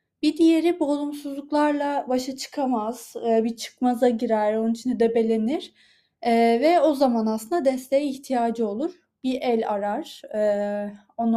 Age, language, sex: 20-39, Turkish, female